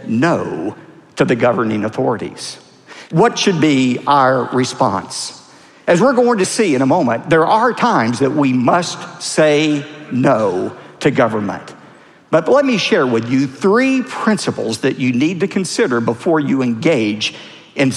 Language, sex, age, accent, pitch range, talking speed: English, male, 50-69, American, 130-210 Hz, 150 wpm